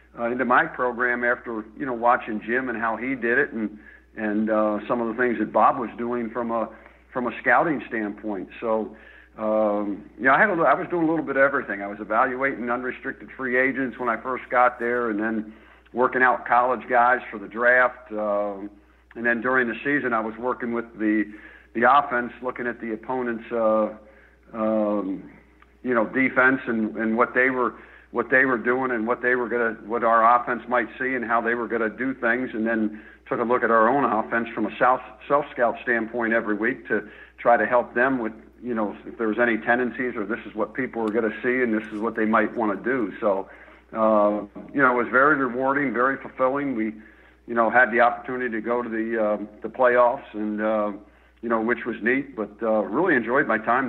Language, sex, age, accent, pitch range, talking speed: English, male, 60-79, American, 110-125 Hz, 220 wpm